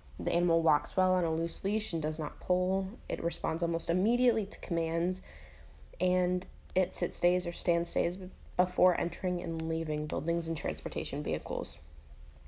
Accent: American